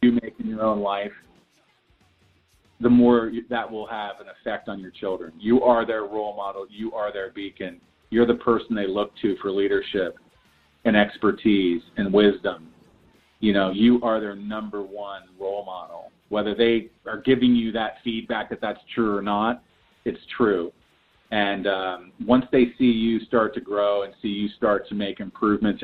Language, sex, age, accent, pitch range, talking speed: English, male, 40-59, American, 105-120 Hz, 175 wpm